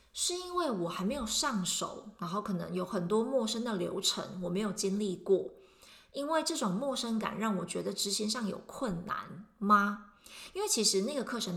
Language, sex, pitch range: Chinese, female, 175-220 Hz